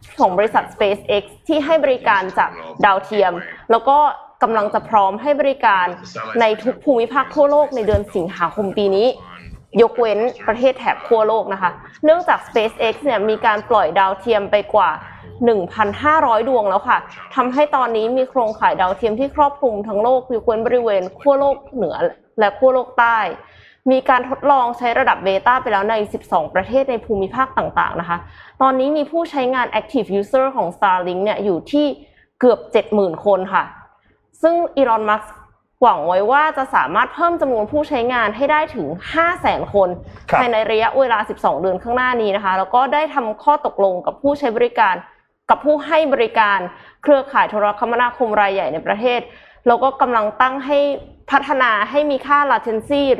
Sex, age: female, 20-39